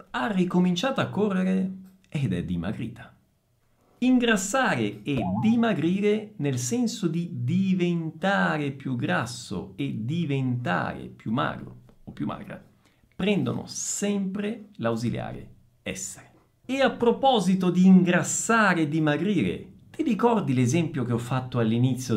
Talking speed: 110 wpm